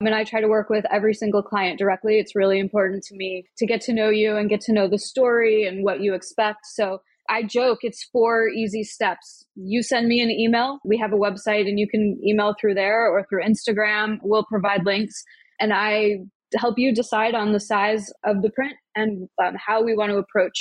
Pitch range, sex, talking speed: 205-230 Hz, female, 220 wpm